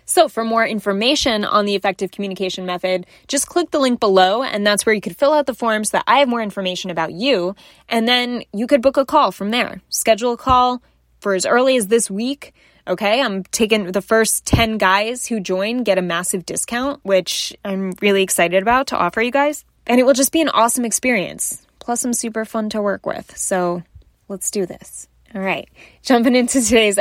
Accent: American